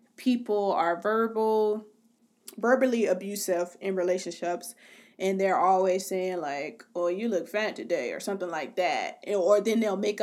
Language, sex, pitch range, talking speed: English, female, 185-220 Hz, 145 wpm